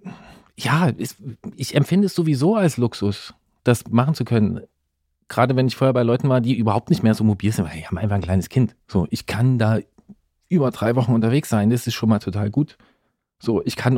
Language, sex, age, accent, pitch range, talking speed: German, male, 40-59, German, 115-135 Hz, 215 wpm